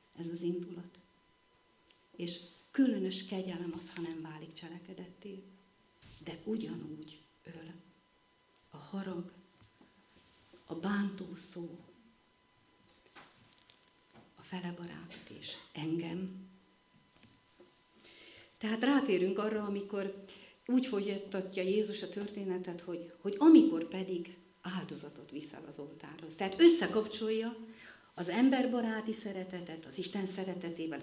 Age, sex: 40-59, female